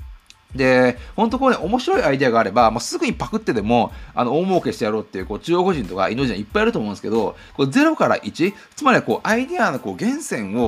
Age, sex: 30-49, male